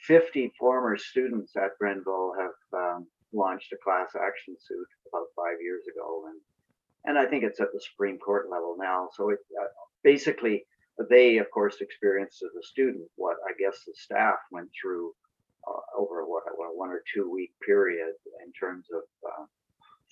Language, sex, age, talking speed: English, male, 50-69, 175 wpm